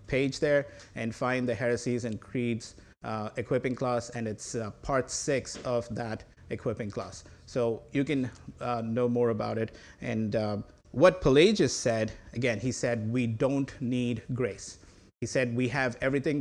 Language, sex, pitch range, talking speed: English, male, 115-130 Hz, 165 wpm